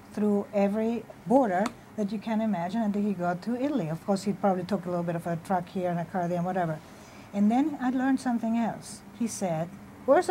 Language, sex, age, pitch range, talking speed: English, female, 50-69, 190-245 Hz, 220 wpm